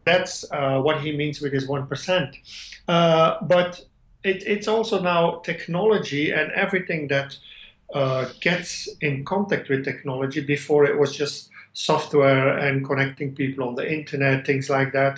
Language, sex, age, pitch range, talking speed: English, male, 50-69, 135-155 Hz, 145 wpm